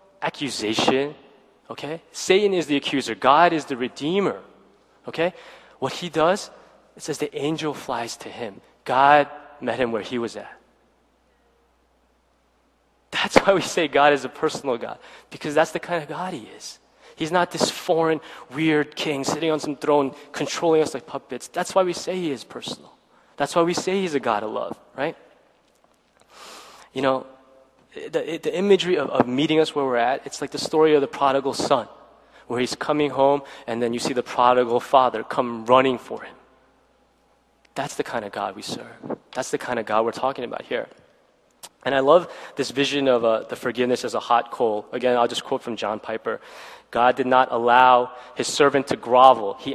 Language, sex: Korean, male